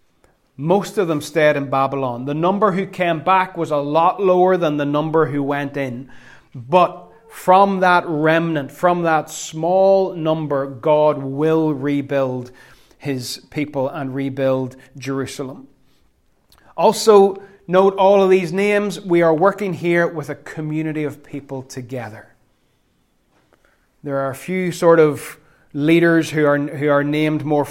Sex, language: male, English